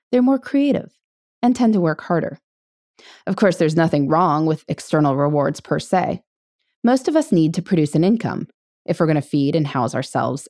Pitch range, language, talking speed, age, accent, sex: 155-260 Hz, English, 190 wpm, 20-39, American, female